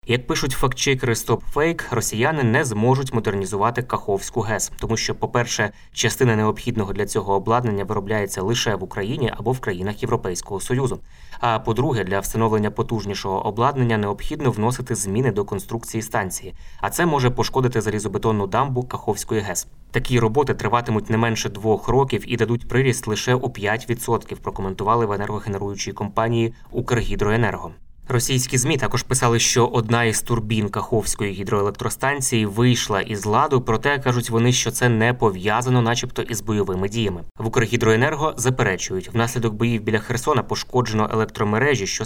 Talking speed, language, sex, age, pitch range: 140 wpm, Ukrainian, male, 20-39, 105-120 Hz